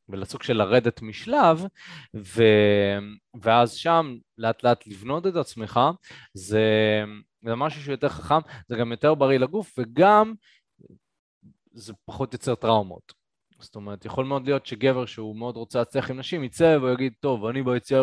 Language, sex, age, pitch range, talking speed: Hebrew, male, 20-39, 110-135 Hz, 145 wpm